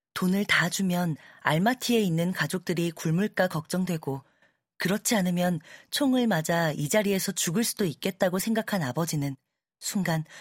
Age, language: 40-59, Korean